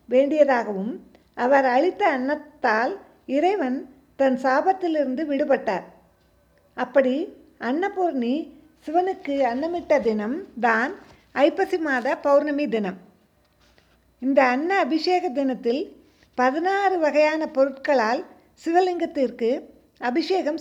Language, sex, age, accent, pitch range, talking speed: Tamil, female, 50-69, native, 260-330 Hz, 80 wpm